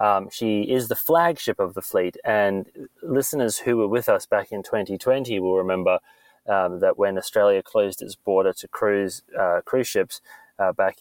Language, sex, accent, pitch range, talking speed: English, male, Australian, 100-135 Hz, 180 wpm